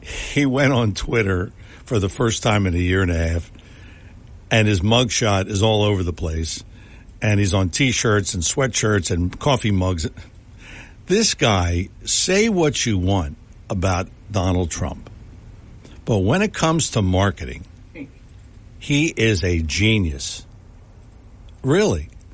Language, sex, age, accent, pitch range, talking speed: English, male, 60-79, American, 95-120 Hz, 135 wpm